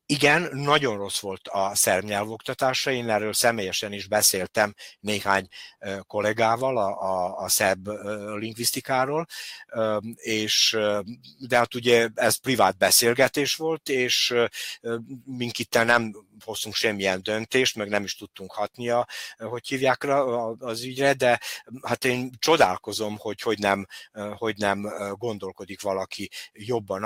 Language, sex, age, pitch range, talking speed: Hungarian, male, 60-79, 105-130 Hz, 115 wpm